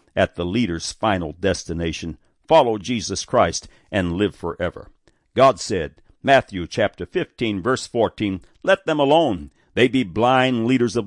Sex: male